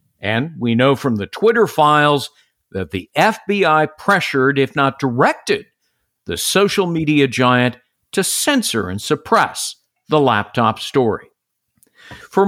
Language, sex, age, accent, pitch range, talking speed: English, male, 50-69, American, 125-175 Hz, 125 wpm